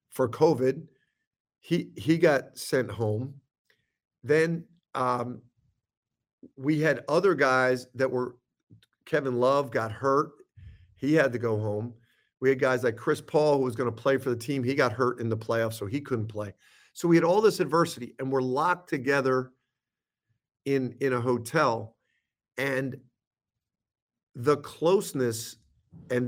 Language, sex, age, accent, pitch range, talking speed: English, male, 50-69, American, 120-145 Hz, 150 wpm